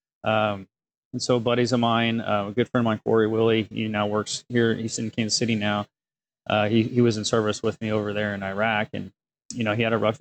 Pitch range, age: 110-125 Hz, 30-49